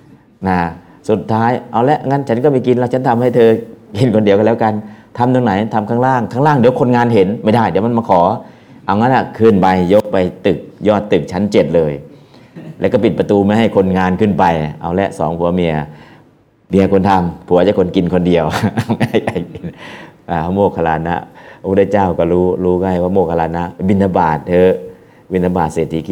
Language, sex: Thai, male